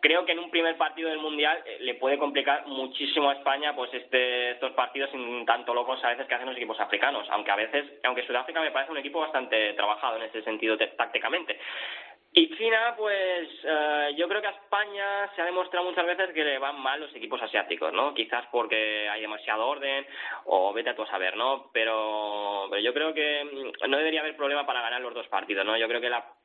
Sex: male